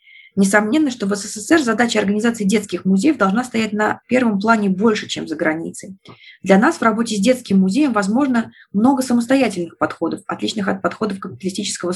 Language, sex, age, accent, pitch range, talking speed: Russian, female, 20-39, native, 190-240 Hz, 160 wpm